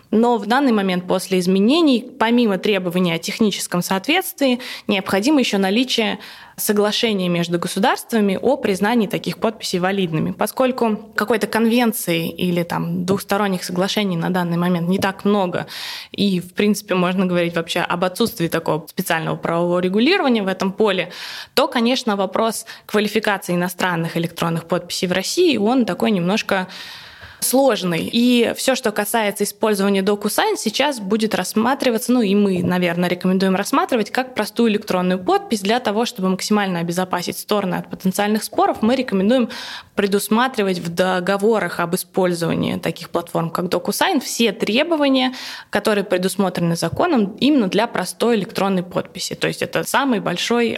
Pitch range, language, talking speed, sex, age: 180-235 Hz, Russian, 140 wpm, female, 20-39